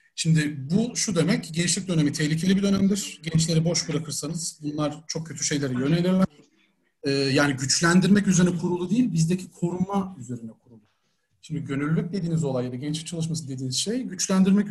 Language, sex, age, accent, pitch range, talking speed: Turkish, male, 40-59, native, 135-180 Hz, 150 wpm